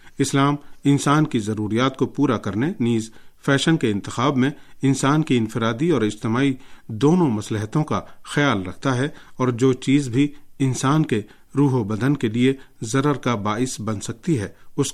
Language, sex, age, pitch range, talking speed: Urdu, male, 40-59, 115-140 Hz, 165 wpm